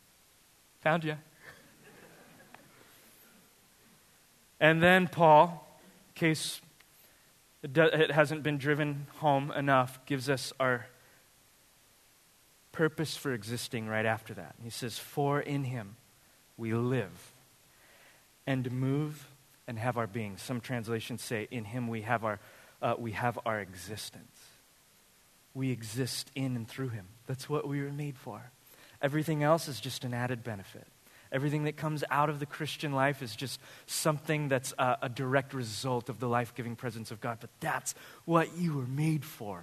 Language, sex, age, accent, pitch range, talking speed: English, male, 30-49, American, 120-145 Hz, 145 wpm